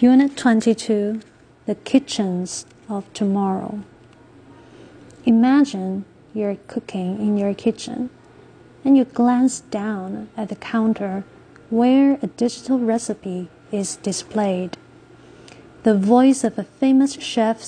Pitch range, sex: 195-240 Hz, female